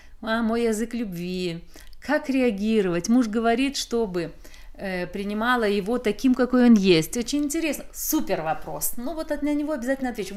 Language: Russian